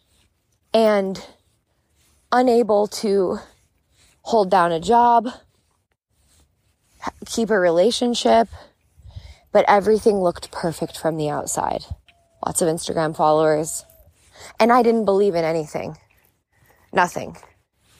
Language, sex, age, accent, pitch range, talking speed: English, female, 20-39, American, 170-230 Hz, 95 wpm